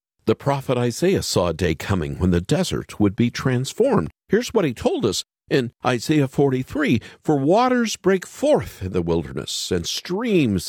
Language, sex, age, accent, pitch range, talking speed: English, male, 50-69, American, 100-160 Hz, 170 wpm